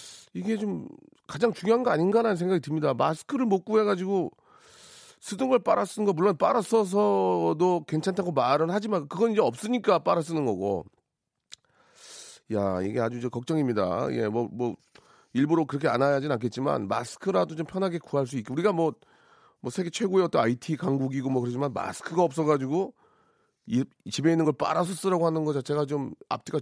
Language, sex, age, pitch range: Korean, male, 40-59, 115-170 Hz